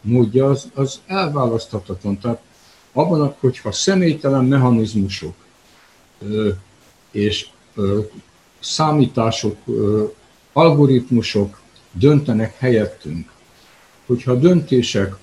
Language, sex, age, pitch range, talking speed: Hungarian, male, 60-79, 105-135 Hz, 75 wpm